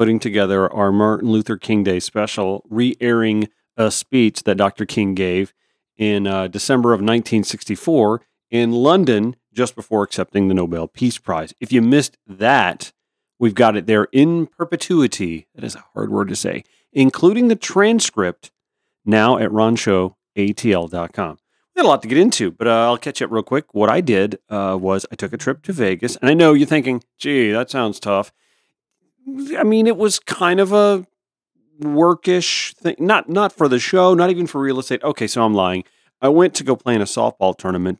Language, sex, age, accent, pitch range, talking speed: English, male, 40-59, American, 100-145 Hz, 185 wpm